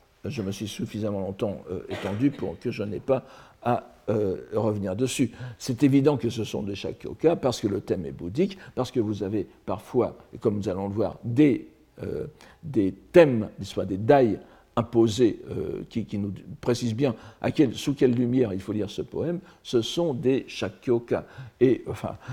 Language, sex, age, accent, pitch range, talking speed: French, male, 60-79, French, 105-130 Hz, 185 wpm